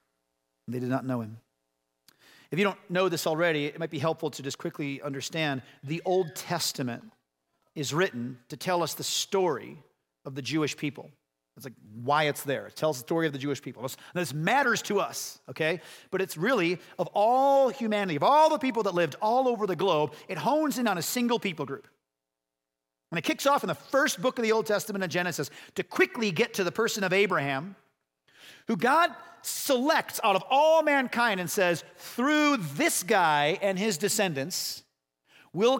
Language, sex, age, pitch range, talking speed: English, male, 40-59, 145-220 Hz, 190 wpm